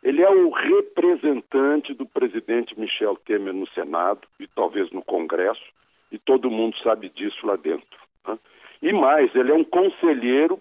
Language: Portuguese